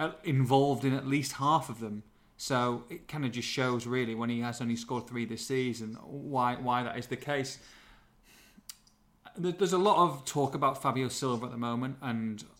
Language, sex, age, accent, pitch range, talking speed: English, male, 30-49, British, 120-140 Hz, 190 wpm